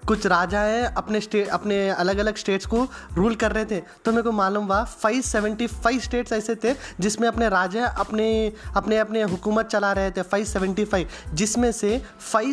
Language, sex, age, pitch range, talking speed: Urdu, male, 20-39, 205-240 Hz, 200 wpm